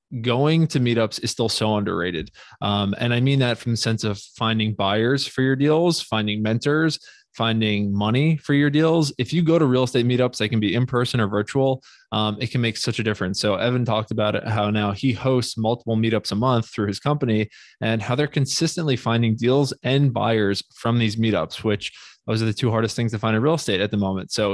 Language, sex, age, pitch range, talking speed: English, male, 20-39, 110-125 Hz, 225 wpm